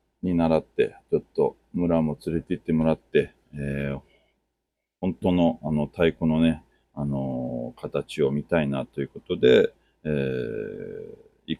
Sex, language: male, Japanese